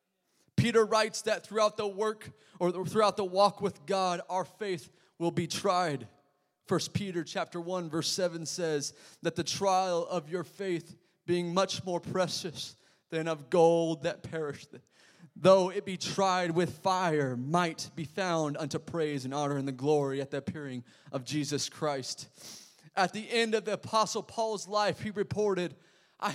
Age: 20-39